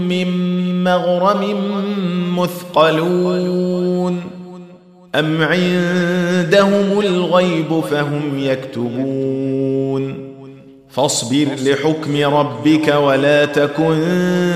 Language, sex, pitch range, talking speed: Arabic, male, 135-175 Hz, 55 wpm